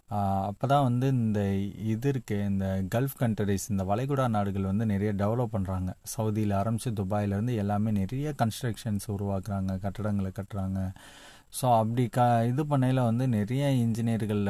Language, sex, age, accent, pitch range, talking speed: Tamil, male, 30-49, native, 100-125 Hz, 135 wpm